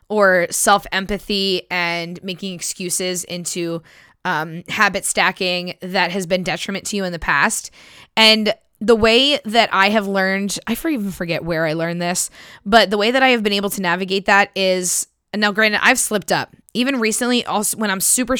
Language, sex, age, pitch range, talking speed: English, female, 10-29, 185-225 Hz, 180 wpm